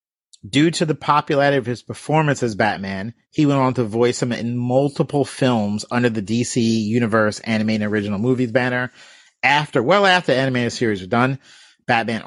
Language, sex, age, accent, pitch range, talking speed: English, male, 40-59, American, 115-140 Hz, 170 wpm